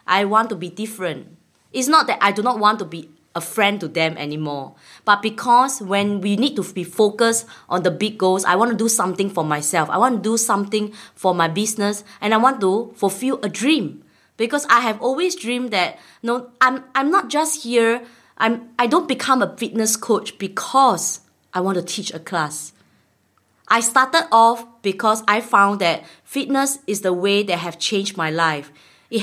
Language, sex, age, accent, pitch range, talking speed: English, female, 20-39, Malaysian, 185-245 Hz, 200 wpm